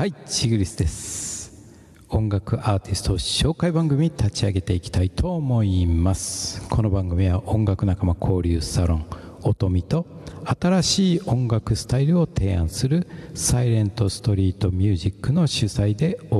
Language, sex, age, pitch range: Japanese, male, 60-79, 95-140 Hz